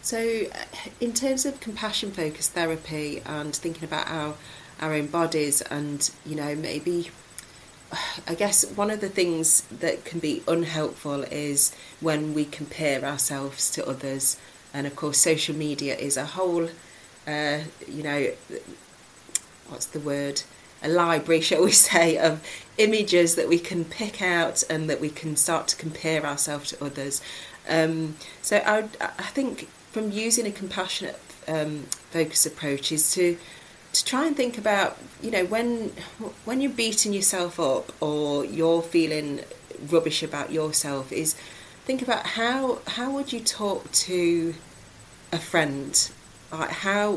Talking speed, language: 150 wpm, English